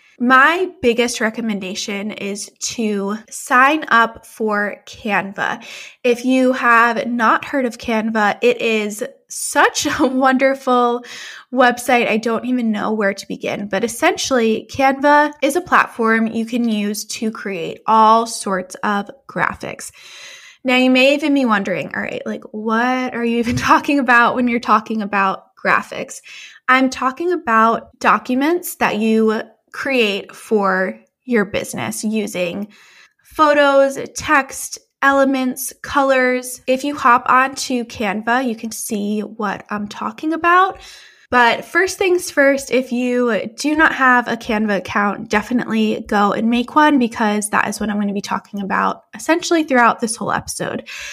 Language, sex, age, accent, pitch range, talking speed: English, female, 20-39, American, 220-275 Hz, 145 wpm